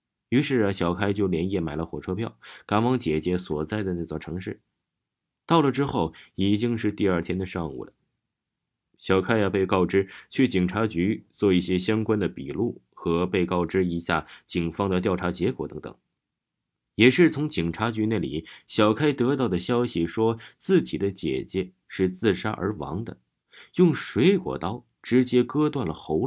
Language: Chinese